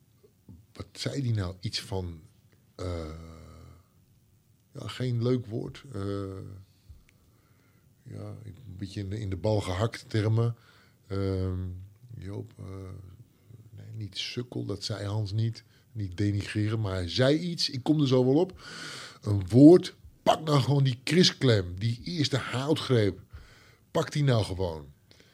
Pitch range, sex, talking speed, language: 95-120 Hz, male, 130 wpm, Dutch